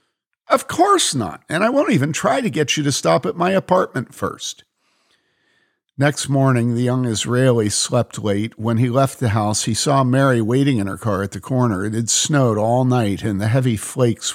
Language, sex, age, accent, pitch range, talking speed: English, male, 50-69, American, 105-145 Hz, 200 wpm